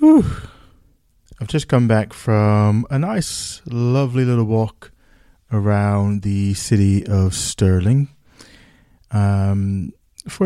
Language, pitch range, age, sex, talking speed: English, 105-125 Hz, 20-39, male, 100 wpm